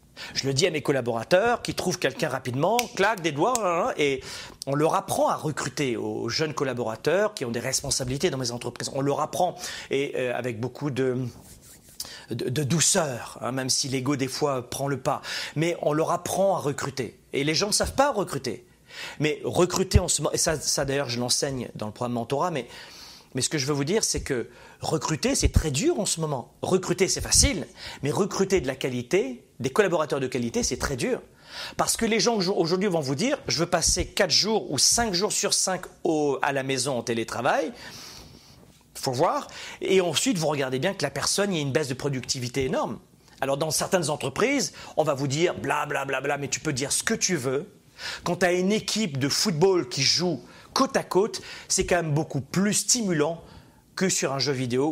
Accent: French